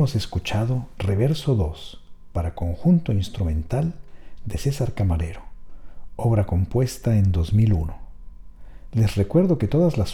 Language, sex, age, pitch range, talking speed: Spanish, male, 50-69, 90-120 Hz, 110 wpm